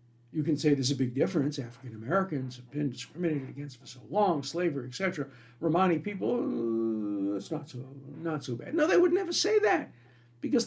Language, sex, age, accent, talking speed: English, male, 60-79, American, 190 wpm